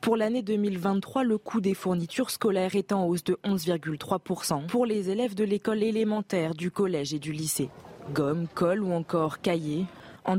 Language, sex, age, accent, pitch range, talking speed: French, female, 20-39, French, 165-215 Hz, 175 wpm